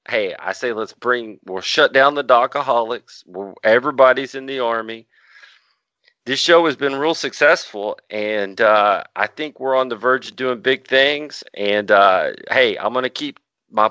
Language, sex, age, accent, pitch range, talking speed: English, male, 40-59, American, 110-135 Hz, 175 wpm